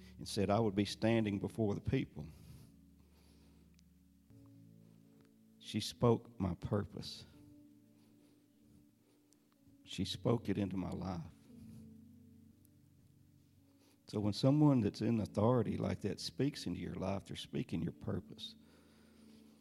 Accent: American